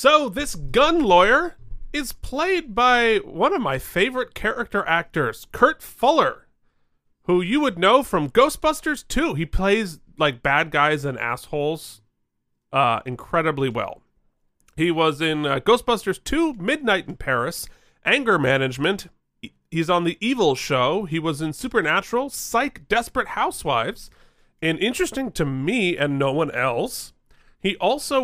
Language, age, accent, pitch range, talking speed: English, 30-49, American, 150-240 Hz, 140 wpm